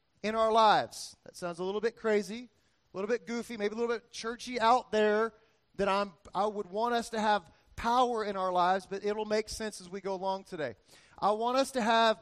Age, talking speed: 40-59, 230 wpm